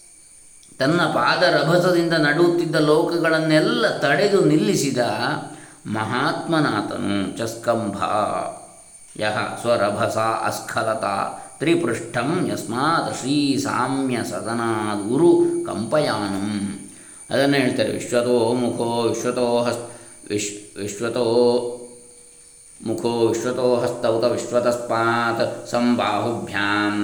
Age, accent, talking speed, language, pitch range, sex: 20-39, native, 65 wpm, Kannada, 115-125 Hz, male